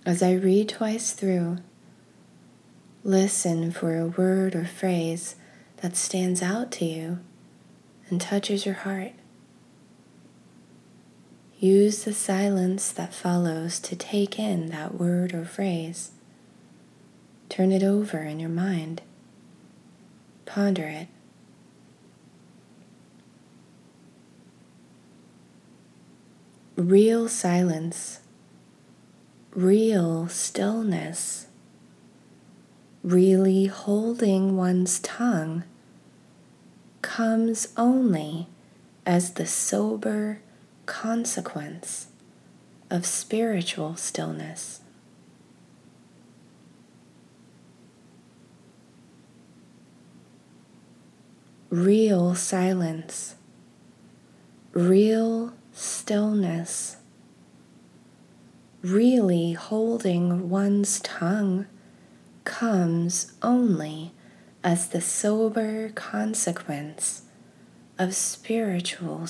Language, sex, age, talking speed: English, female, 20-39, 65 wpm